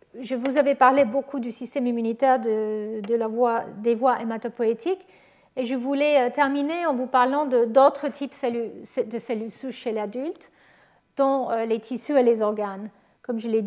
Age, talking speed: 50-69, 180 wpm